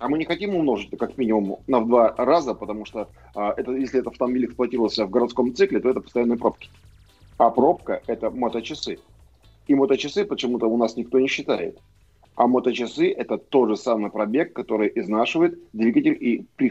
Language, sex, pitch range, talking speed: Russian, male, 105-130 Hz, 185 wpm